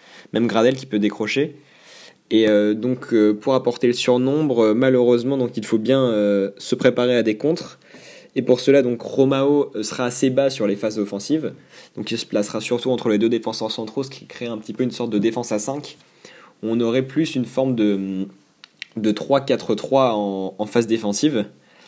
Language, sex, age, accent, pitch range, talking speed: French, male, 20-39, French, 105-125 Hz, 195 wpm